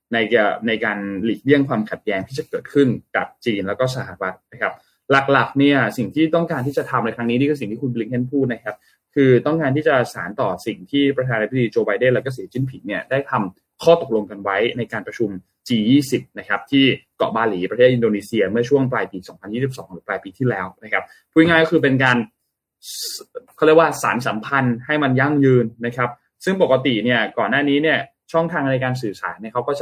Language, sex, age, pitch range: Thai, male, 20-39, 115-145 Hz